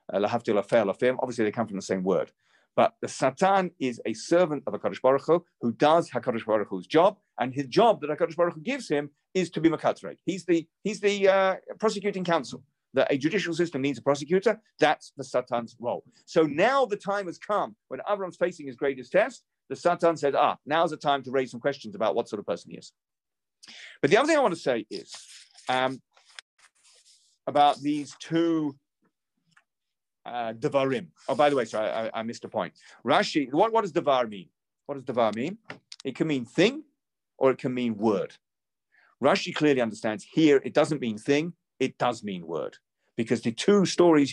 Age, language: 40-59, English